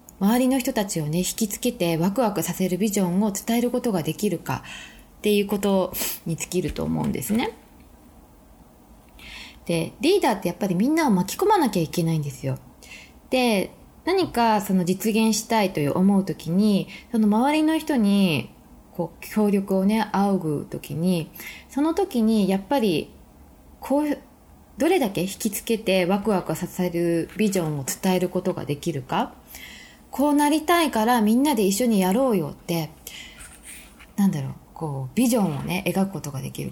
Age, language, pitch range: 20-39, Japanese, 175-265 Hz